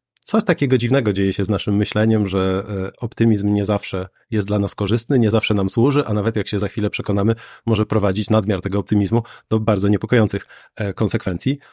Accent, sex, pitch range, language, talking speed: native, male, 105-120 Hz, Polish, 185 wpm